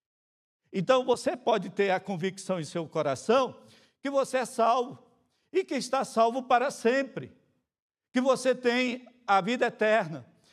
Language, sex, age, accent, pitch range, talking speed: Portuguese, male, 60-79, Brazilian, 180-240 Hz, 140 wpm